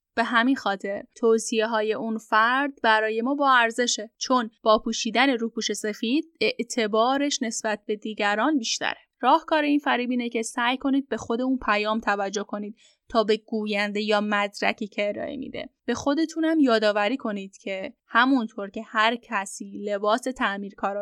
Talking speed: 150 wpm